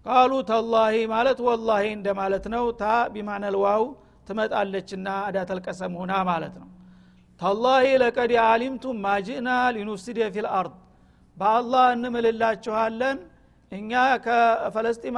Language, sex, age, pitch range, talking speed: Amharic, male, 50-69, 210-240 Hz, 125 wpm